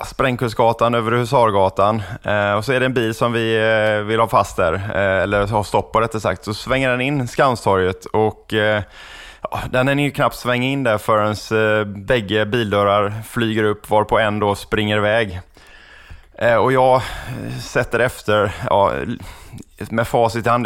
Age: 20-39